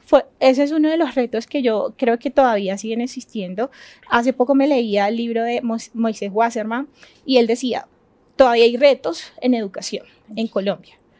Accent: Colombian